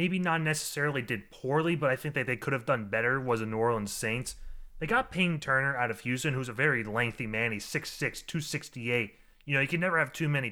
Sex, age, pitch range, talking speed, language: male, 30-49, 120-150 Hz, 240 wpm, English